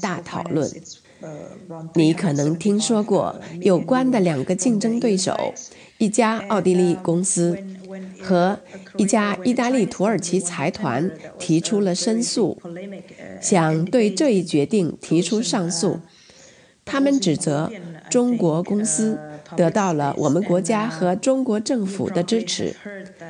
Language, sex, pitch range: English, female, 170-220 Hz